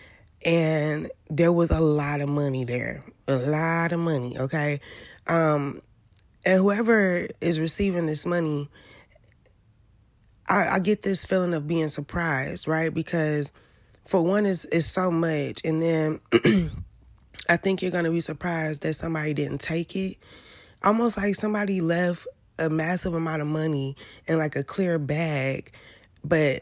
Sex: female